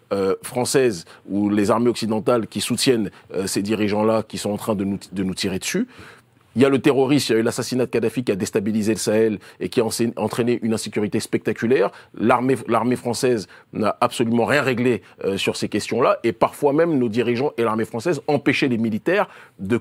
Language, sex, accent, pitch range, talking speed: French, male, French, 105-130 Hz, 205 wpm